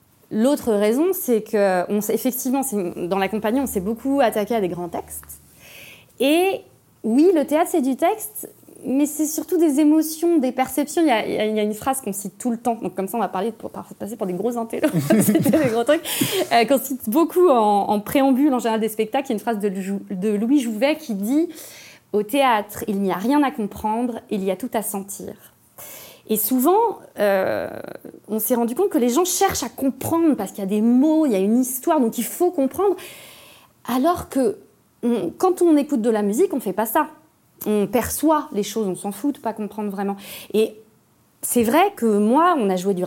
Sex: female